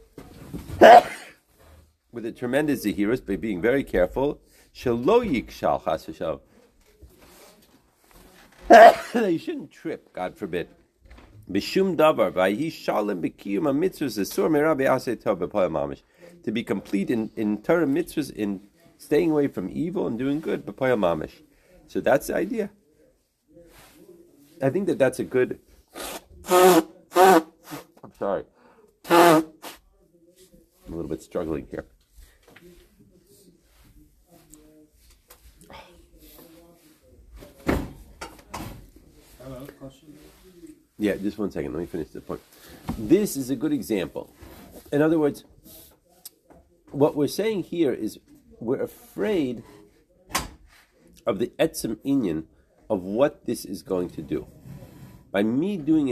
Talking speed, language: 85 wpm, English